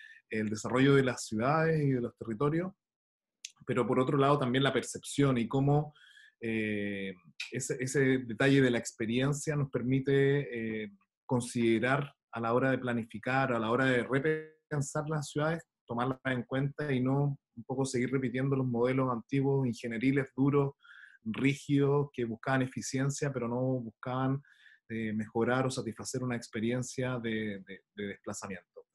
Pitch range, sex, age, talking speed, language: 120-145 Hz, male, 30-49, 150 wpm, Spanish